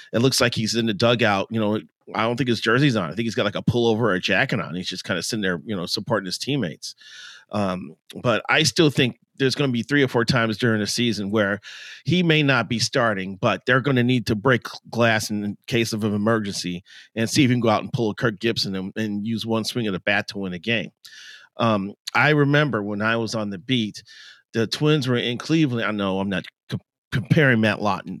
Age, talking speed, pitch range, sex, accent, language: 40-59, 250 wpm, 105-130 Hz, male, American, English